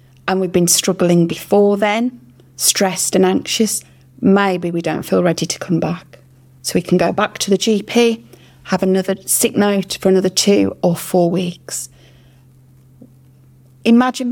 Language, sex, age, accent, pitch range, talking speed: English, female, 30-49, British, 130-190 Hz, 150 wpm